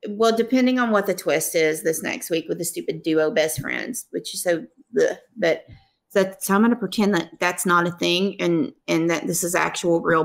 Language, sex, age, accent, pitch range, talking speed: English, female, 30-49, American, 175-220 Hz, 230 wpm